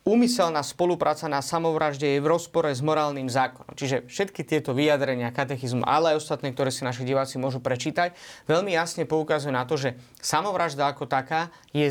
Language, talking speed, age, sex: Slovak, 170 wpm, 30-49, male